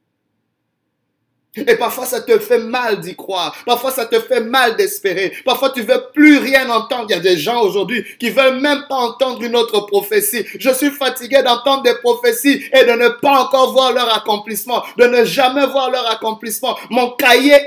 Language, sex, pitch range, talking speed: French, male, 230-290 Hz, 190 wpm